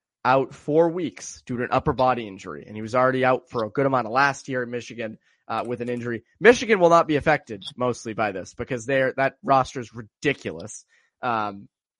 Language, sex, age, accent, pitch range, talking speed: English, male, 20-39, American, 120-155 Hz, 210 wpm